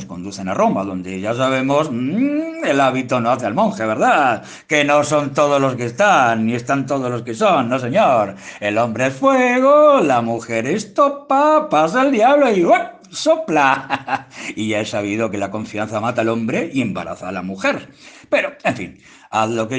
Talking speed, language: 195 wpm, Spanish